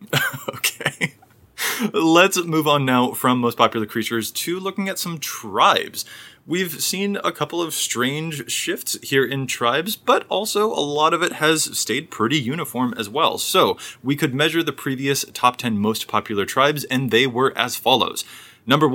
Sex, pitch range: male, 110-155 Hz